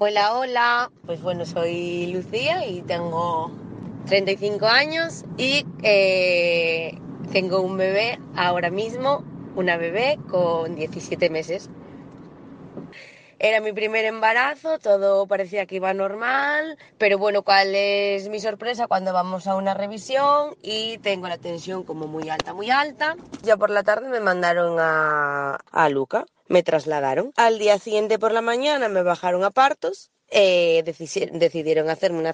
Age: 20-39